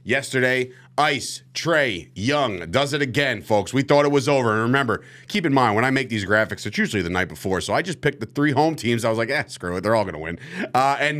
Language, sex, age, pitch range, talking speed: English, male, 30-49, 105-145 Hz, 255 wpm